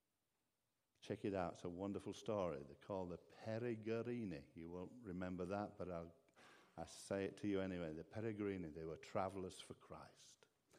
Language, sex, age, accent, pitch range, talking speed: English, male, 50-69, British, 105-125 Hz, 165 wpm